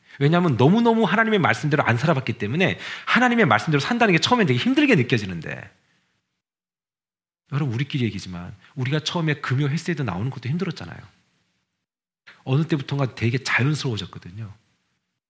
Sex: male